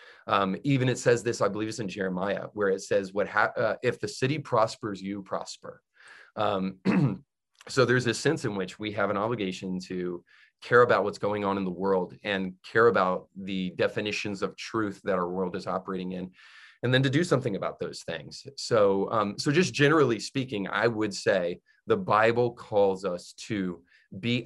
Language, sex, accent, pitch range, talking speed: English, male, American, 95-115 Hz, 190 wpm